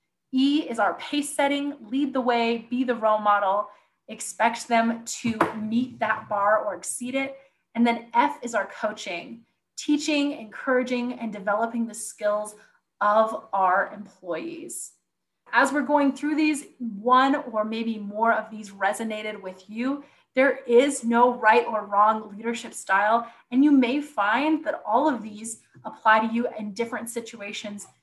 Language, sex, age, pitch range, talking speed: English, female, 30-49, 215-255 Hz, 155 wpm